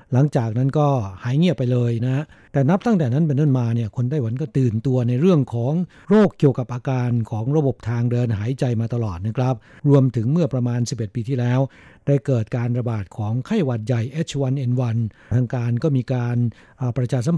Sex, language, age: male, Thai, 60-79